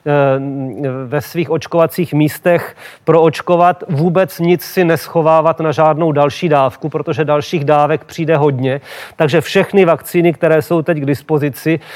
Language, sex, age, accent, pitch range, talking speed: Czech, male, 40-59, native, 145-165 Hz, 130 wpm